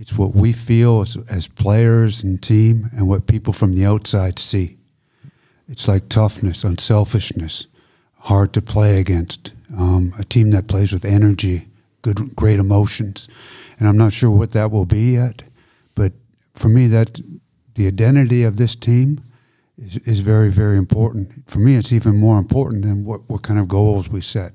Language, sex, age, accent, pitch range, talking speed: German, male, 50-69, American, 100-120 Hz, 175 wpm